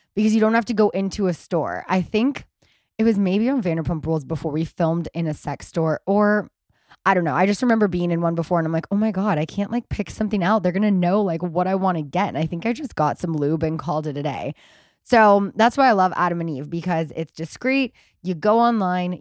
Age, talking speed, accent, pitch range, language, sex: 20-39, 260 wpm, American, 175-230 Hz, English, female